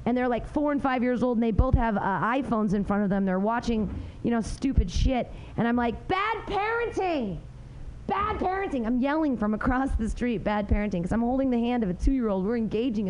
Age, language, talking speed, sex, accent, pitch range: 30-49, English, 225 wpm, female, American, 195-275 Hz